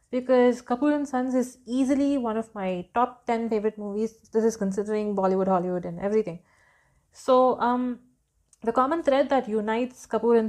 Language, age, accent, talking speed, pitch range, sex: English, 30-49, Indian, 155 wpm, 210-255 Hz, female